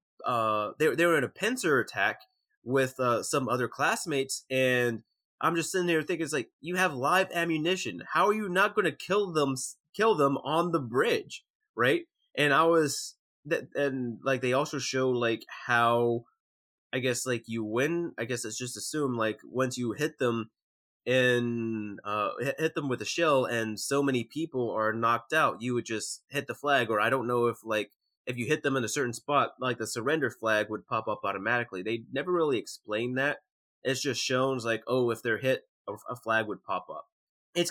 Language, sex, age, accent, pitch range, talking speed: English, male, 20-39, American, 115-160 Hz, 200 wpm